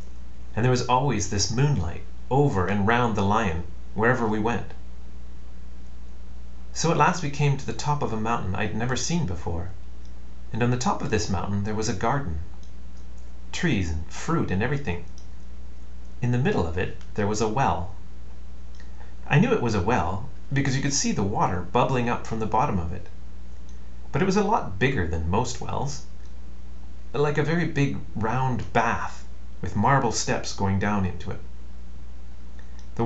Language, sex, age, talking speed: English, male, 40-59, 175 wpm